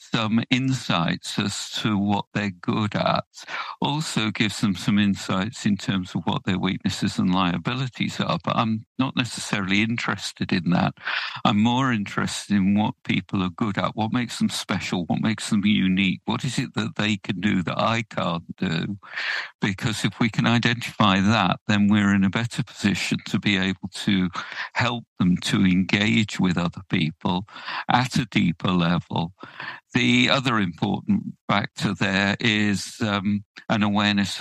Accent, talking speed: British, 160 wpm